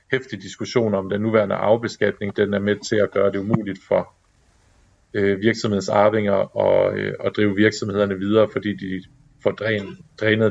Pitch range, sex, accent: 100-115 Hz, male, native